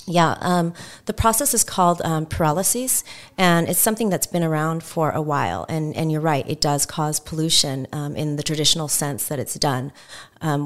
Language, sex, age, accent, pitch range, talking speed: English, female, 30-49, American, 145-165 Hz, 190 wpm